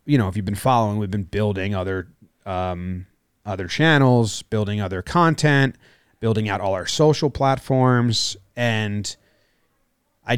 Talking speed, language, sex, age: 140 wpm, English, male, 30-49